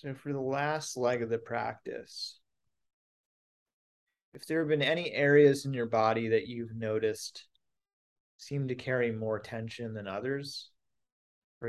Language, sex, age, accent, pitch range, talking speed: English, male, 30-49, American, 110-130 Hz, 145 wpm